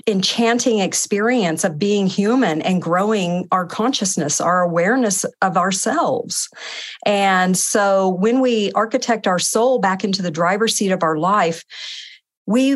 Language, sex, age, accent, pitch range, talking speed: English, female, 50-69, American, 175-220 Hz, 135 wpm